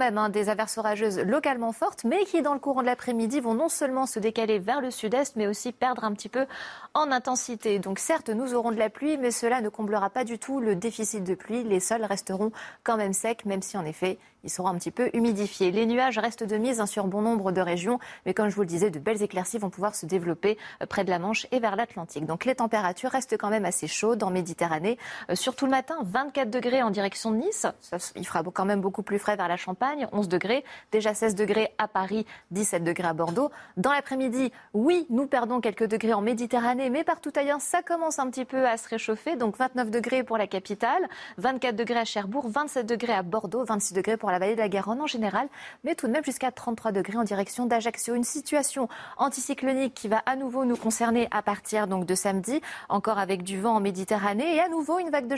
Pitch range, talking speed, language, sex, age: 205-255 Hz, 235 wpm, French, female, 30-49